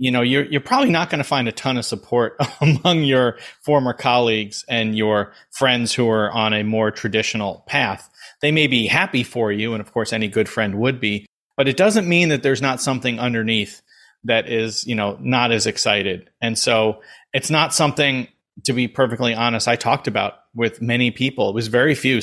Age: 30-49